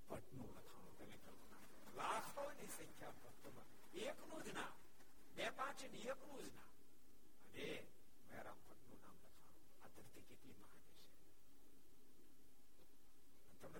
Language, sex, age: Gujarati, male, 60-79